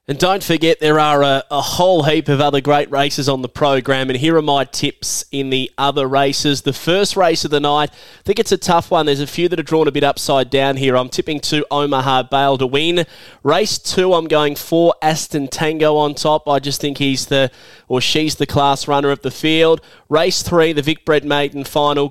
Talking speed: 230 wpm